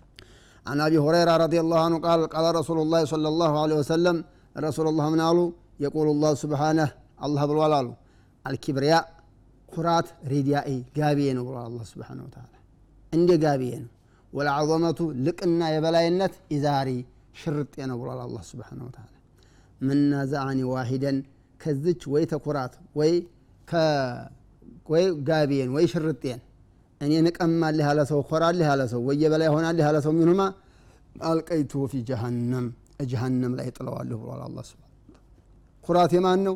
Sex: male